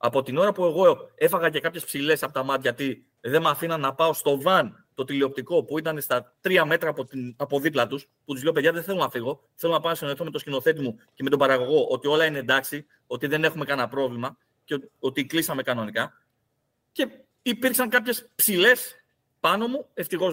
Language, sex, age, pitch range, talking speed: Greek, male, 30-49, 130-185 Hz, 210 wpm